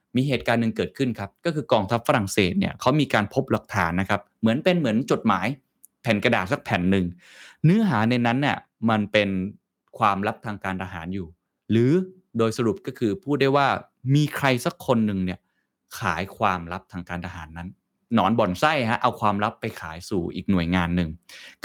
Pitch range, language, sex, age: 95-130 Hz, Thai, male, 20-39